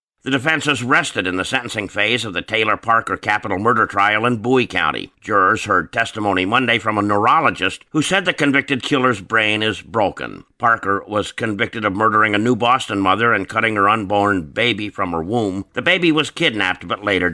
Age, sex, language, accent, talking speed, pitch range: 50-69, male, English, American, 190 wpm, 95-130 Hz